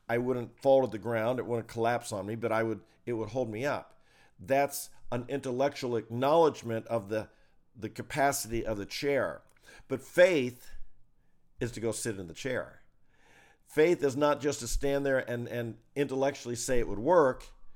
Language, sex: English, male